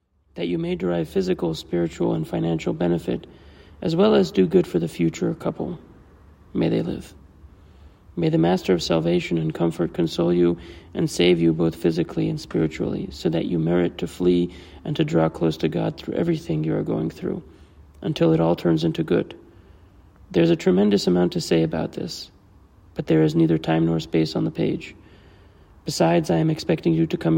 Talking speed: 190 wpm